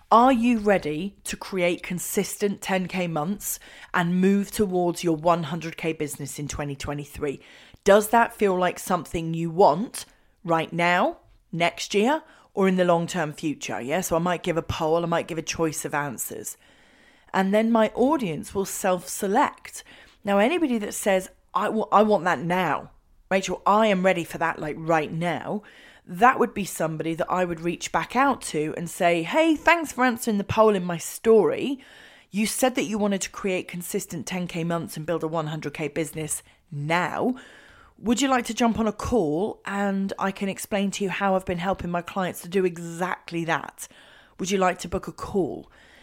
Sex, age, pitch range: female, 30-49, 170-210 Hz